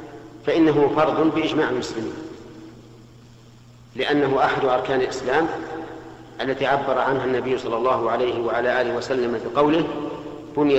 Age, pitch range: 50-69, 125-150 Hz